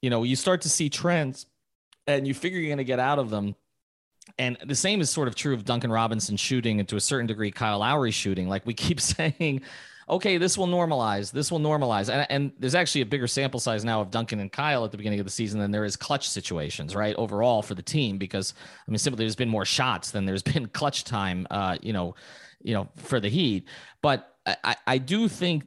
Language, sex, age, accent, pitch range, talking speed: English, male, 30-49, American, 105-145 Hz, 240 wpm